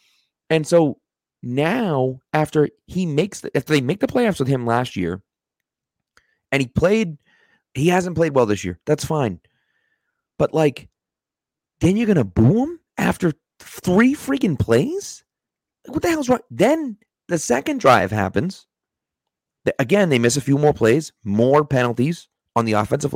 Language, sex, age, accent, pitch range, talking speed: English, male, 30-49, American, 115-165 Hz, 160 wpm